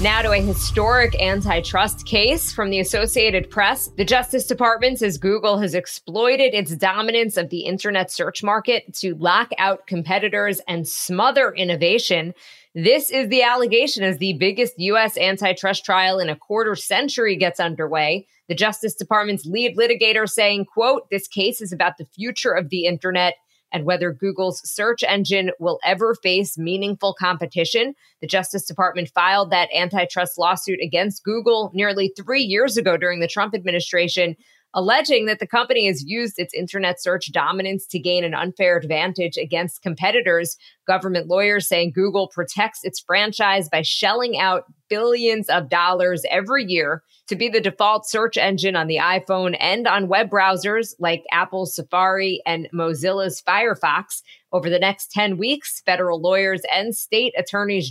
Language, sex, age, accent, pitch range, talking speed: English, female, 20-39, American, 180-215 Hz, 155 wpm